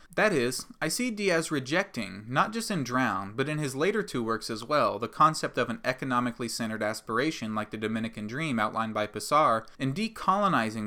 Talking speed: 180 wpm